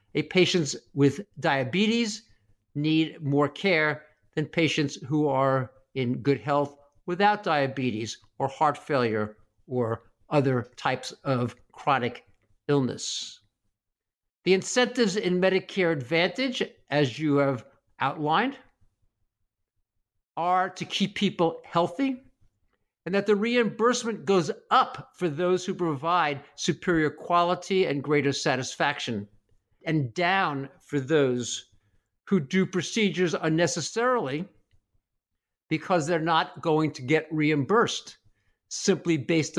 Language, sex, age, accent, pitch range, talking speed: English, male, 50-69, American, 120-180 Hz, 110 wpm